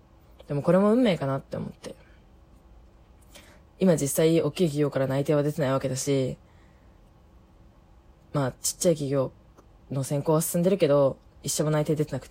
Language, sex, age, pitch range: Japanese, female, 20-39, 130-180 Hz